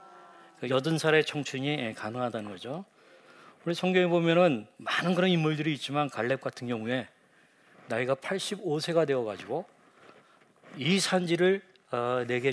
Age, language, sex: 40-59, Korean, male